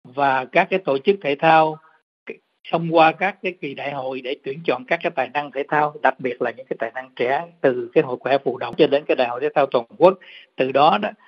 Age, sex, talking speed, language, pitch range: 60-79, male, 260 wpm, Vietnamese, 135-180 Hz